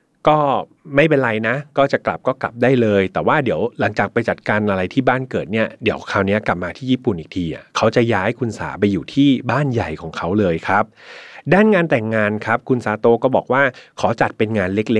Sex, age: male, 30-49